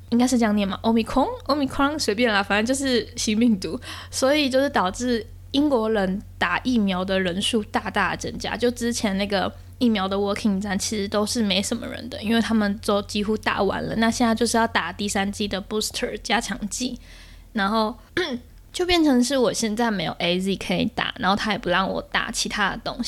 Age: 10-29